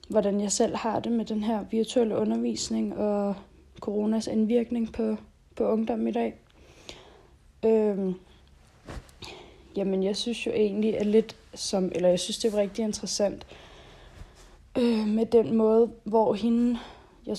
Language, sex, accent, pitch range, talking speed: Danish, female, native, 190-225 Hz, 145 wpm